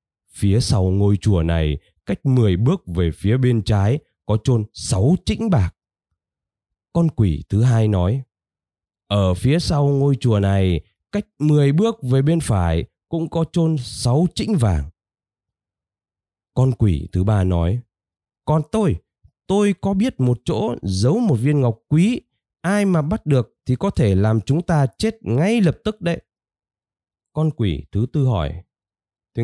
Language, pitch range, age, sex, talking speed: Vietnamese, 95-150 Hz, 20-39, male, 160 wpm